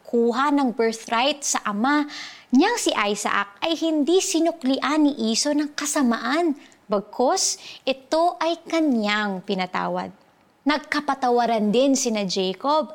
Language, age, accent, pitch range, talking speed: Filipino, 20-39, native, 220-295 Hz, 110 wpm